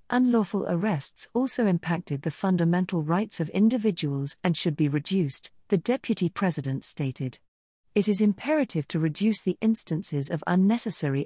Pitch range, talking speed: 155-215 Hz, 140 wpm